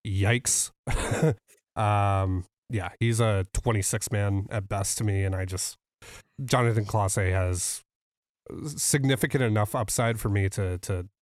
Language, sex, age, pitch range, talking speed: English, male, 30-49, 105-145 Hz, 120 wpm